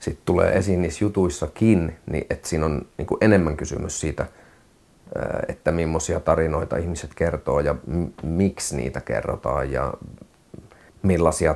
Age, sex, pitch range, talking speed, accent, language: 30-49, male, 75-95 Hz, 125 wpm, native, Finnish